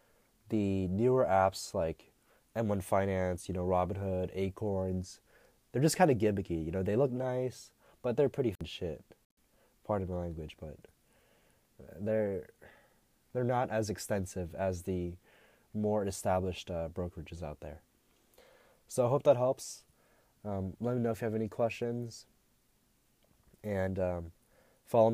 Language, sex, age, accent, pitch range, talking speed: English, male, 20-39, American, 95-115 Hz, 140 wpm